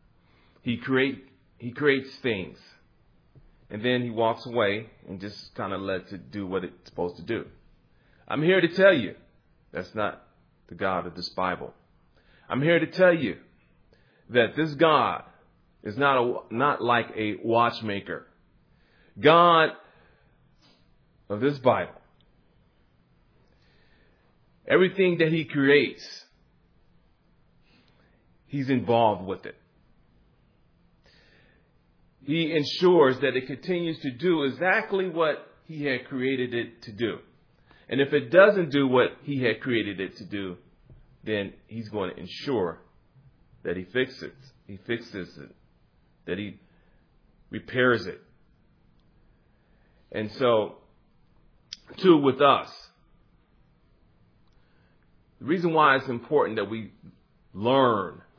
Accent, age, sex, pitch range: American, 40-59, male, 105-145 Hz